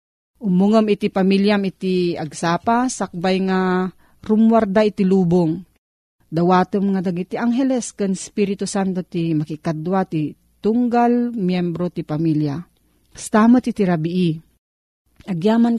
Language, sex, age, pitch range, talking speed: Filipino, female, 40-59, 170-215 Hz, 100 wpm